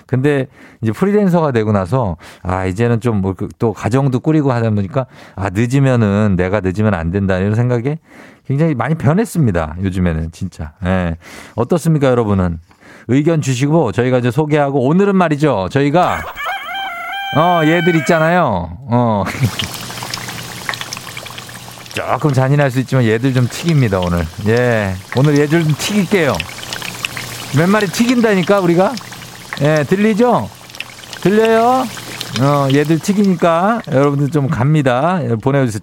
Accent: native